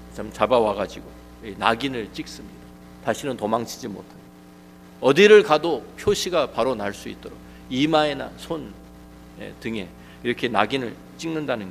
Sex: male